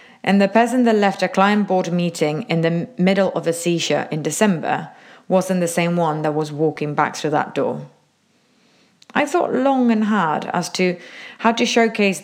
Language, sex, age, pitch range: English, female, 30-49, 170-230 Hz